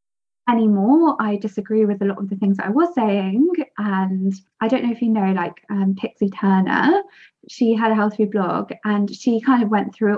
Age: 20-39